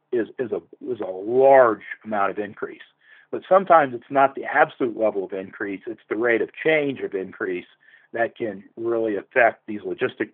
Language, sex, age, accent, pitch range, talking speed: English, male, 50-69, American, 115-165 Hz, 175 wpm